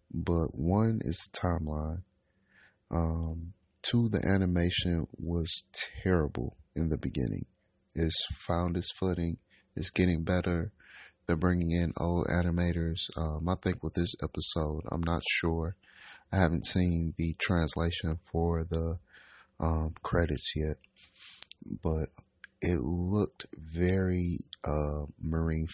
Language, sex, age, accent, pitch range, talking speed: English, male, 30-49, American, 80-95 Hz, 120 wpm